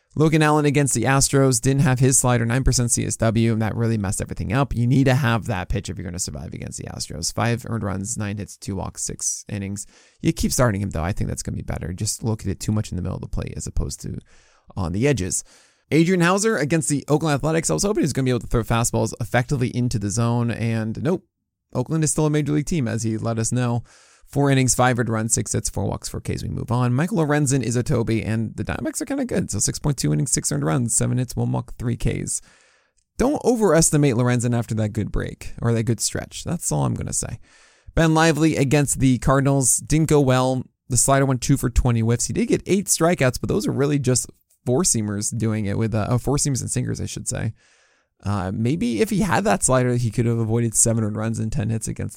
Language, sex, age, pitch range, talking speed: English, male, 20-39, 110-140 Hz, 250 wpm